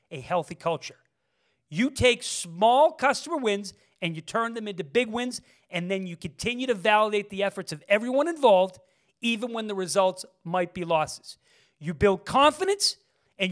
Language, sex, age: English, male, 40-59